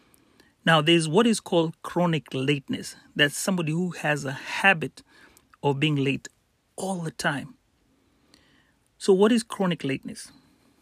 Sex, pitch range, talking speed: male, 145-190 Hz, 135 wpm